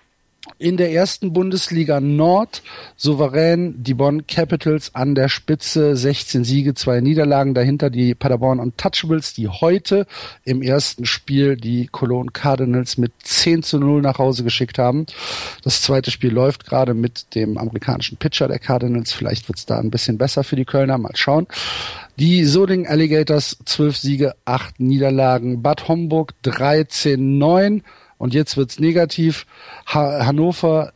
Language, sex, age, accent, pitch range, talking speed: German, male, 40-59, German, 125-165 Hz, 150 wpm